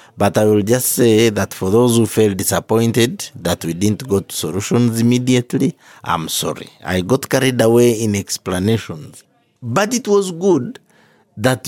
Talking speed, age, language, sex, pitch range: 155 wpm, 50-69, English, male, 100-135 Hz